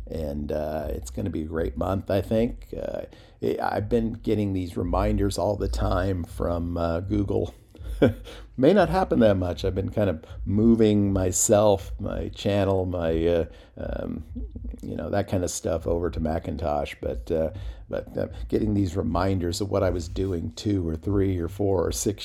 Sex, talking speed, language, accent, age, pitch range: male, 175 wpm, English, American, 50-69, 80-100 Hz